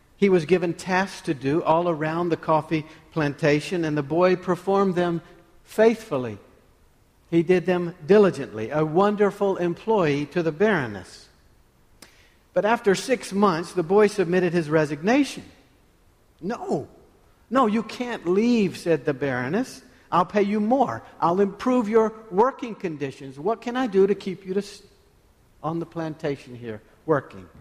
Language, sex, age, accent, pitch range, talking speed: English, male, 60-79, American, 150-195 Hz, 140 wpm